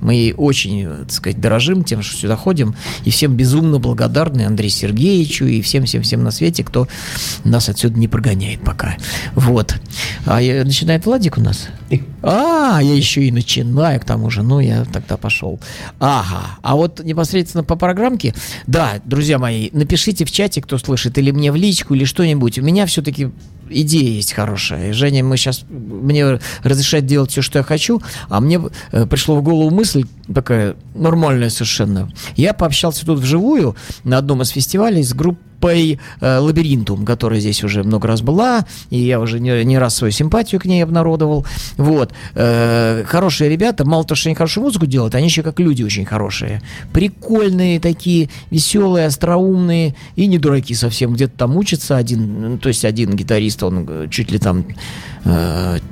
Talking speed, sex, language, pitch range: 170 wpm, male, Russian, 115-160 Hz